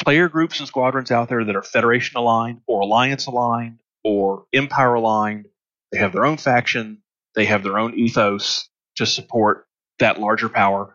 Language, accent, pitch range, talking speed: English, American, 105-140 Hz, 155 wpm